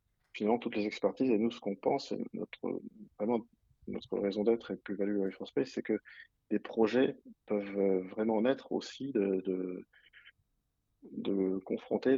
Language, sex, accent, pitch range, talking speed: French, male, French, 95-110 Hz, 145 wpm